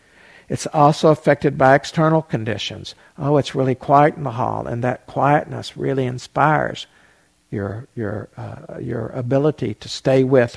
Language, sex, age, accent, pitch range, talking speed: English, male, 60-79, American, 125-170 Hz, 150 wpm